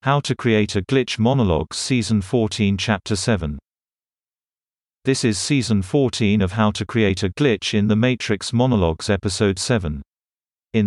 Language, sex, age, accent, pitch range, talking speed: English, male, 40-59, British, 95-120 Hz, 150 wpm